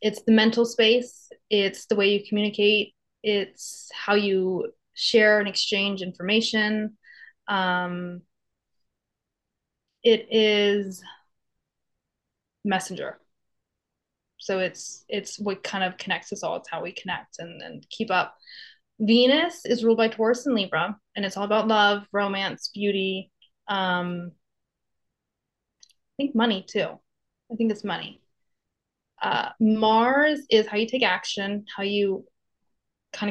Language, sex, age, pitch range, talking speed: English, female, 20-39, 190-225 Hz, 125 wpm